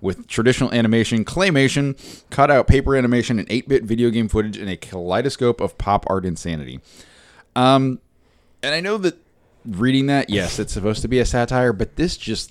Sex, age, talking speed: male, 20-39, 175 wpm